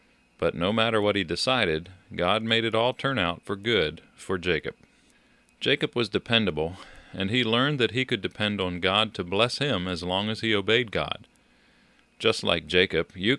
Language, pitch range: English, 95-115 Hz